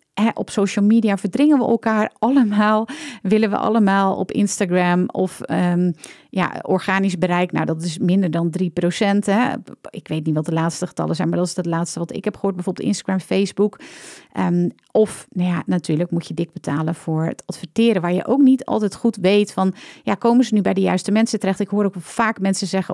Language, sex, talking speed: Dutch, female, 190 wpm